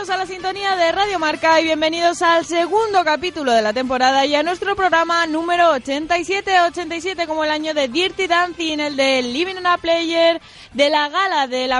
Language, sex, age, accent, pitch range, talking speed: Spanish, female, 20-39, Spanish, 260-350 Hz, 195 wpm